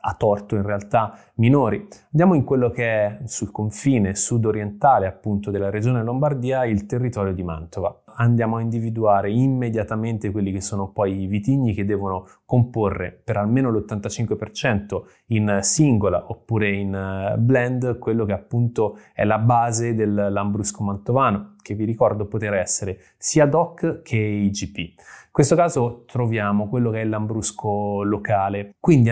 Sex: male